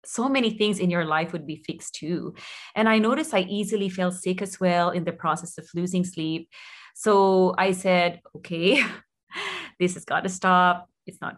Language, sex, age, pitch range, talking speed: Czech, female, 30-49, 165-200 Hz, 190 wpm